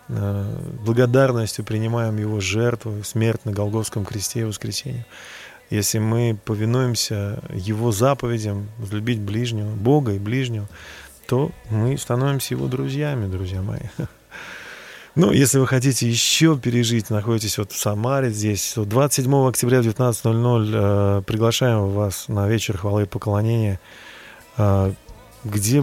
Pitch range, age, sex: 105-120 Hz, 20-39, male